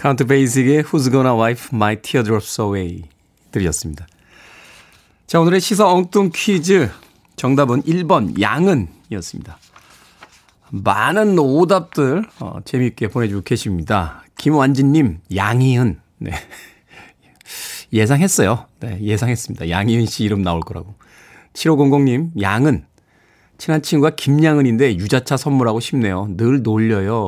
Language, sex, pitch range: Korean, male, 100-150 Hz